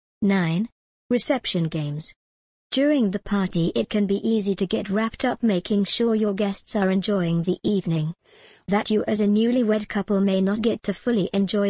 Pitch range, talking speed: 180-215 Hz, 175 wpm